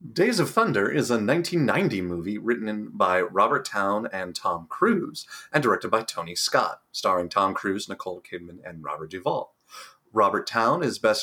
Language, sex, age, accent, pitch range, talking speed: English, male, 30-49, American, 105-140 Hz, 165 wpm